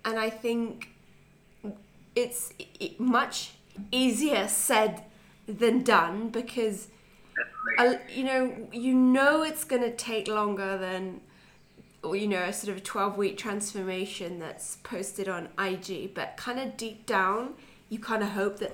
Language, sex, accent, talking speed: English, female, British, 135 wpm